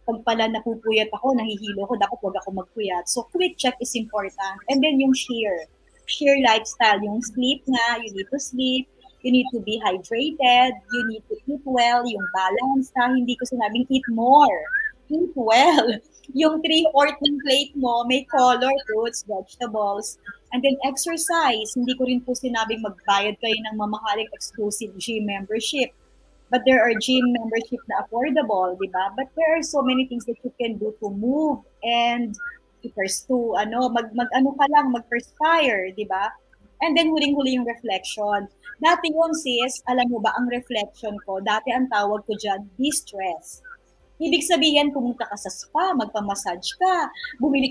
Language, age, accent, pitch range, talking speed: English, 20-39, Filipino, 215-275 Hz, 165 wpm